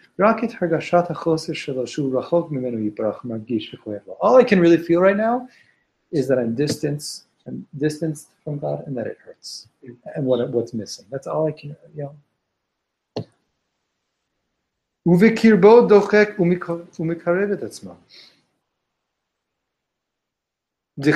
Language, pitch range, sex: English, 140-195 Hz, male